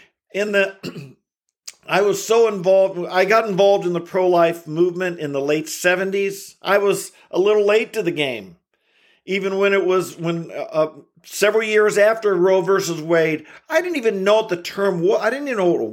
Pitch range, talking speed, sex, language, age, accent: 175-225 Hz, 190 wpm, male, English, 50-69, American